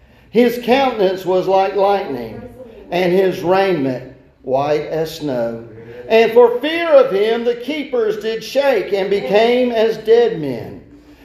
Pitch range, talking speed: 165-235 Hz, 135 wpm